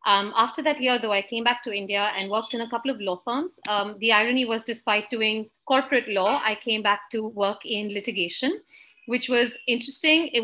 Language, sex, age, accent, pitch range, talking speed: English, female, 30-49, Indian, 205-245 Hz, 215 wpm